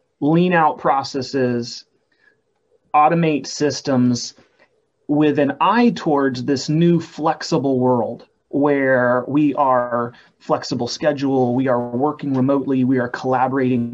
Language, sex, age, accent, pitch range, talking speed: English, male, 30-49, American, 125-160 Hz, 110 wpm